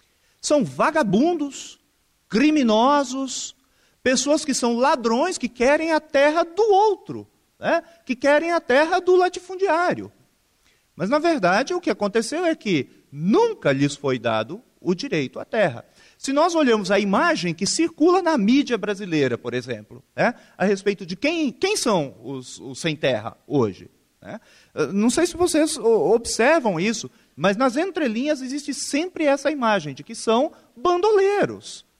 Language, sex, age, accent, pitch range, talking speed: Portuguese, male, 40-59, Brazilian, 205-320 Hz, 145 wpm